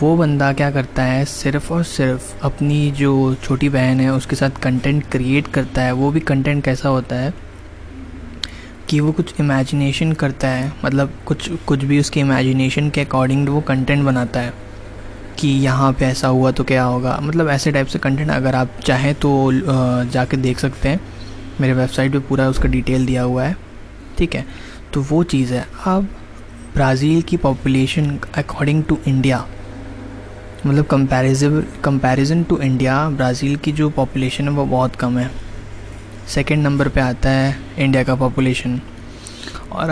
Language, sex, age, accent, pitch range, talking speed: Hindi, male, 20-39, native, 125-145 Hz, 165 wpm